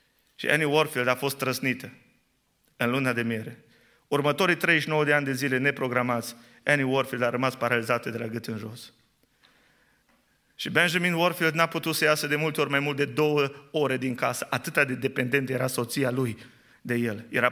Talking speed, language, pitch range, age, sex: 180 wpm, Romanian, 130-220 Hz, 30-49, male